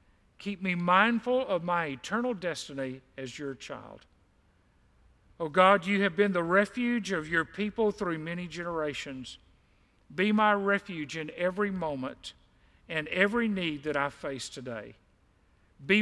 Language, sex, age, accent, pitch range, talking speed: English, male, 50-69, American, 140-205 Hz, 140 wpm